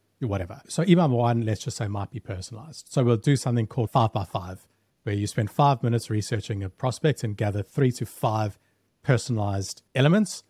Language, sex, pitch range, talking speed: English, male, 105-140 Hz, 190 wpm